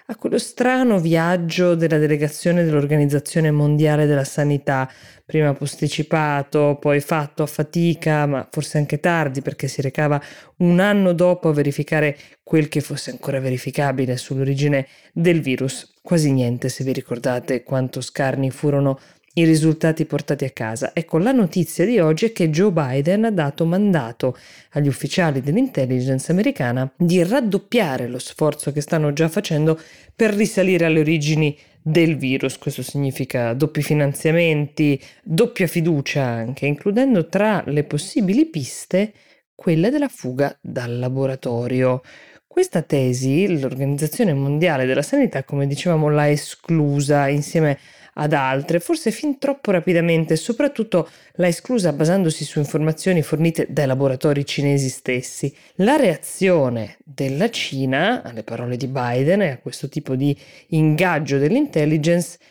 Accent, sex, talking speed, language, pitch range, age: native, female, 135 wpm, Italian, 140-170 Hz, 20-39